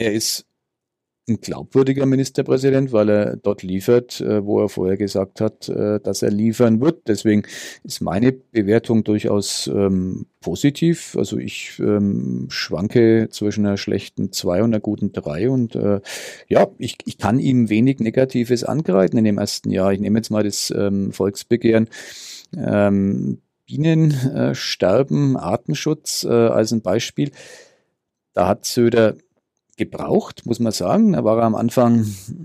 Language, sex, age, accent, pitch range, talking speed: German, male, 40-59, German, 100-125 Hz, 140 wpm